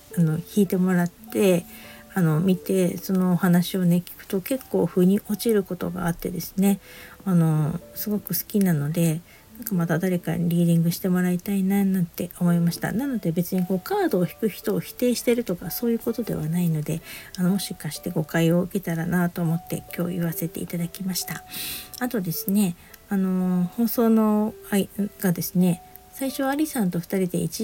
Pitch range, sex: 175-210 Hz, female